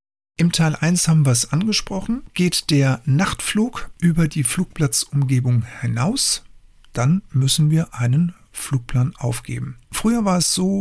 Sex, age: male, 50-69